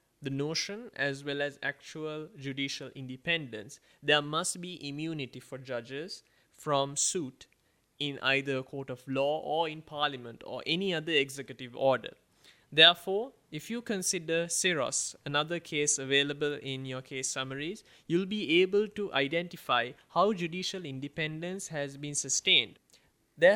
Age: 20-39